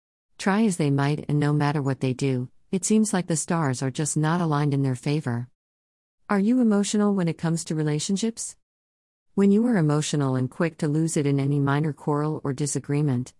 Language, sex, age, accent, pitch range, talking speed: English, female, 50-69, American, 130-155 Hz, 200 wpm